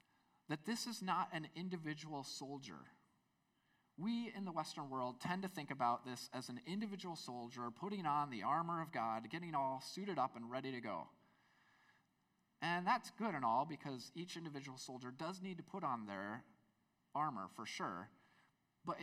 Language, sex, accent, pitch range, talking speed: English, male, American, 130-180 Hz, 170 wpm